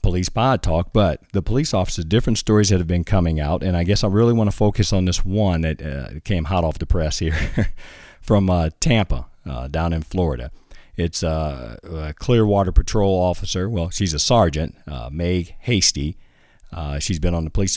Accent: American